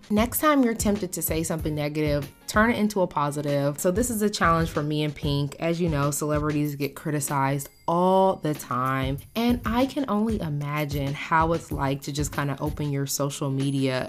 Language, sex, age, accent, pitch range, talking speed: English, female, 20-39, American, 135-170 Hz, 200 wpm